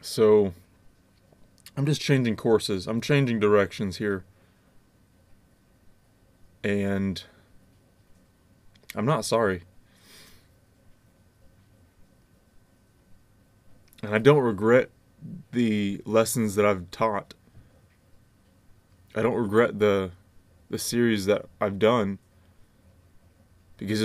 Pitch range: 95-115 Hz